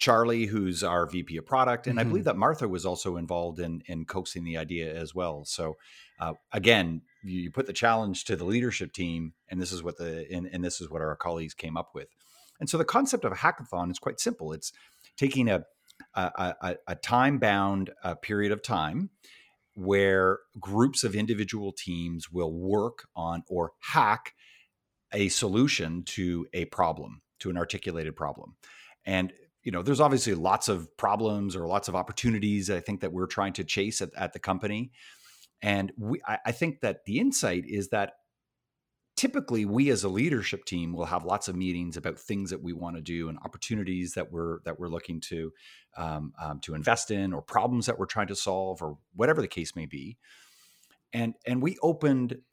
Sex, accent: male, American